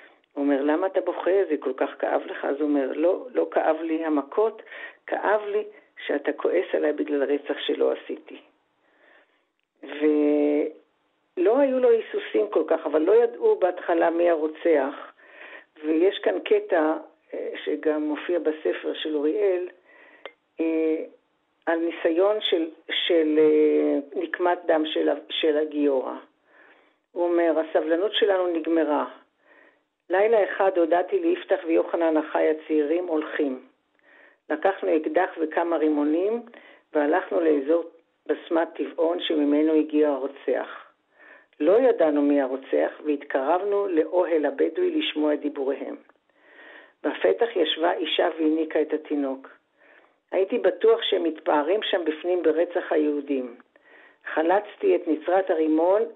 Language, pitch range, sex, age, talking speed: Hebrew, 150-195 Hz, female, 50-69, 115 wpm